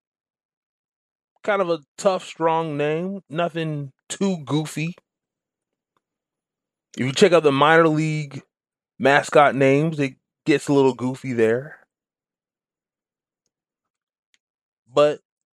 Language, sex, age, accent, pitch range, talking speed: English, male, 30-49, American, 105-145 Hz, 95 wpm